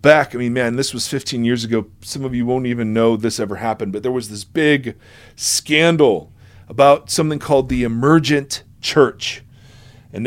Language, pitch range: English, 115-140 Hz